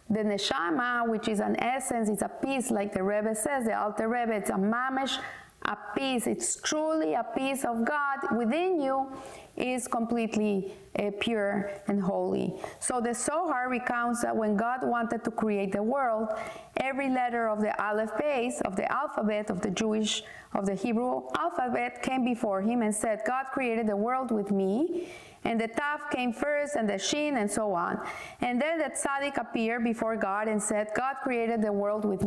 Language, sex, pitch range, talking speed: English, female, 215-270 Hz, 185 wpm